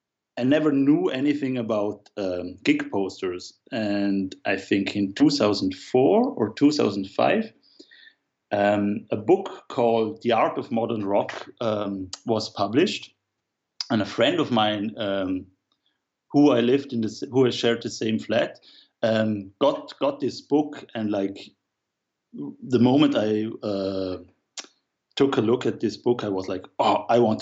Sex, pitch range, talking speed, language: male, 100-125 Hz, 145 wpm, English